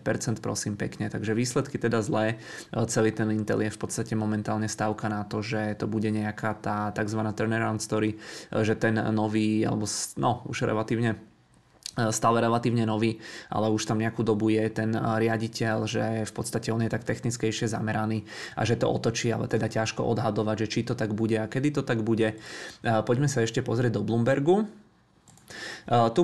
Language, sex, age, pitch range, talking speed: Czech, male, 20-39, 110-115 Hz, 170 wpm